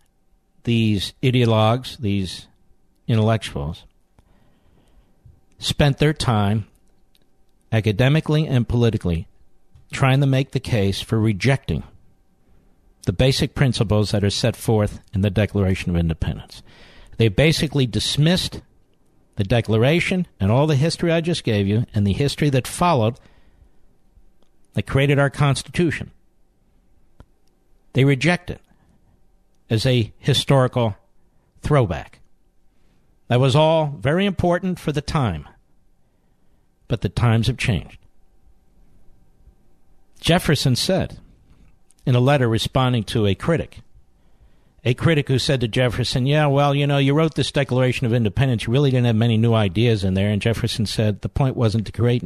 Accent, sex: American, male